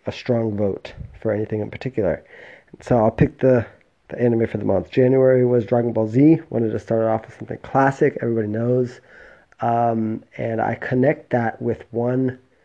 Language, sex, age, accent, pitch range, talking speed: English, male, 20-39, American, 110-130 Hz, 175 wpm